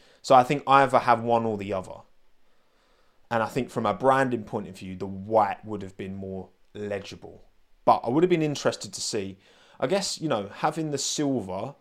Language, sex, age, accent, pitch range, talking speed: English, male, 20-39, British, 100-125 Hz, 205 wpm